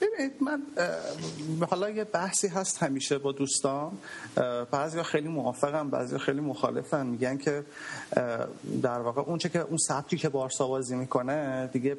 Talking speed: 135 wpm